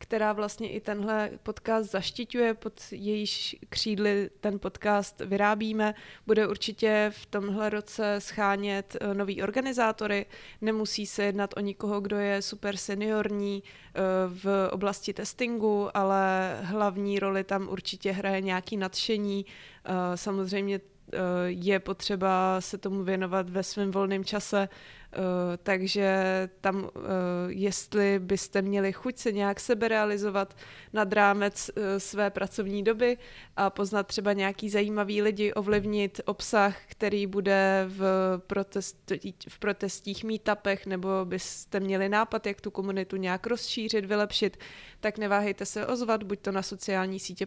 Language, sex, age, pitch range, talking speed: Czech, female, 20-39, 190-210 Hz, 130 wpm